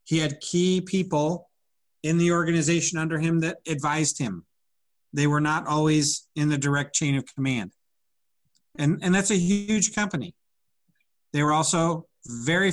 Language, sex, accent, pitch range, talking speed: English, male, American, 140-165 Hz, 150 wpm